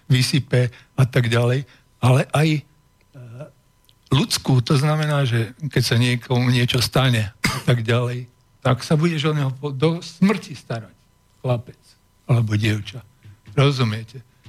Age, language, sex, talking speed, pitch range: 60-79, Slovak, male, 125 wpm, 125-150 Hz